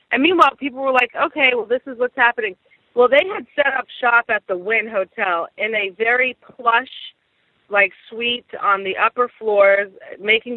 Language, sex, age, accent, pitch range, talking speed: English, female, 30-49, American, 195-245 Hz, 180 wpm